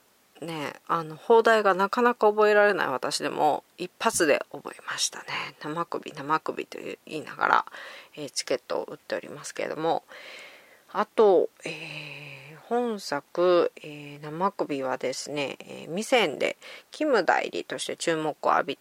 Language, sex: Japanese, female